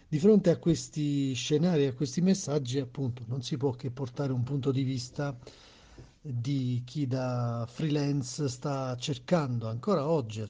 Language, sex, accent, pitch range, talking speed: Italian, male, native, 125-145 Hz, 155 wpm